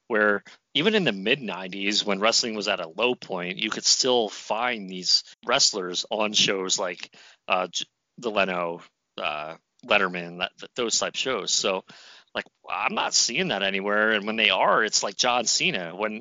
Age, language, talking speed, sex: 30-49, English, 165 wpm, male